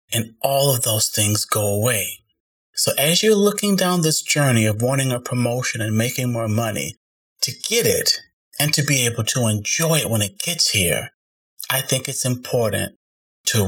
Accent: American